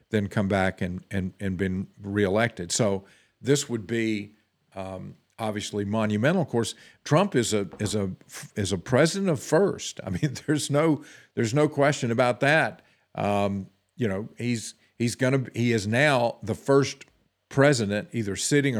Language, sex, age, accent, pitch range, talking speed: English, male, 50-69, American, 100-125 Hz, 165 wpm